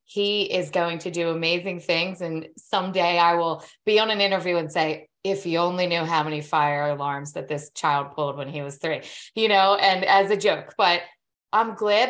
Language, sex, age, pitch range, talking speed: English, female, 20-39, 160-195 Hz, 210 wpm